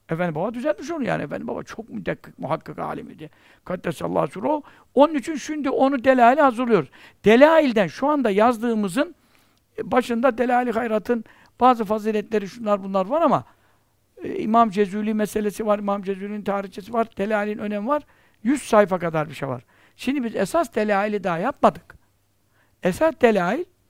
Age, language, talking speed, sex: 60-79, Turkish, 145 wpm, male